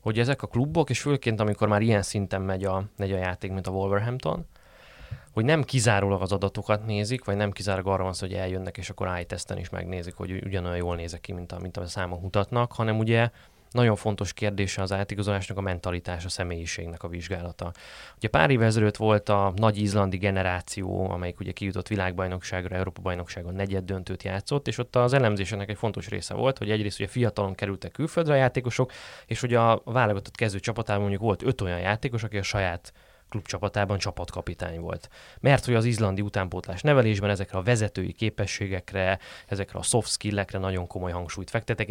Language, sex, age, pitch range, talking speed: Hungarian, male, 20-39, 90-110 Hz, 180 wpm